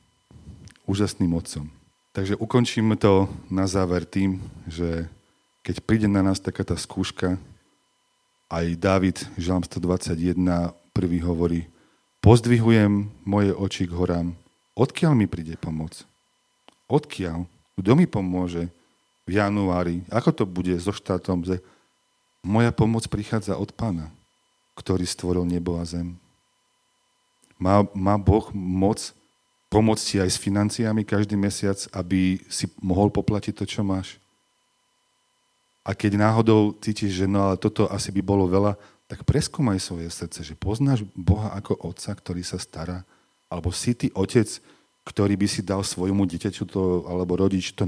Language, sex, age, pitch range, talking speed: Slovak, male, 40-59, 90-110 Hz, 135 wpm